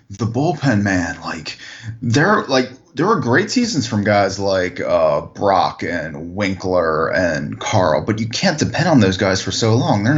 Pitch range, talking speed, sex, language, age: 95-125 Hz, 175 wpm, male, English, 20-39